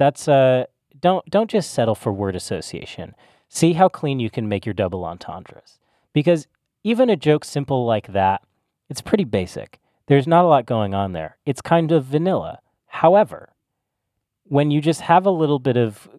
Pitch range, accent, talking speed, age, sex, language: 100-145 Hz, American, 180 wpm, 30-49, male, English